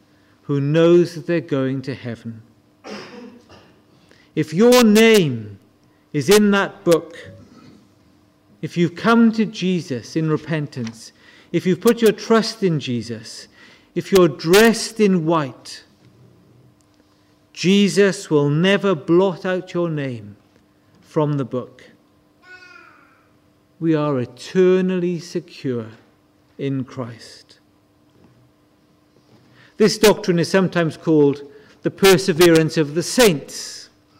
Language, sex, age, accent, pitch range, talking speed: English, male, 50-69, British, 140-195 Hz, 105 wpm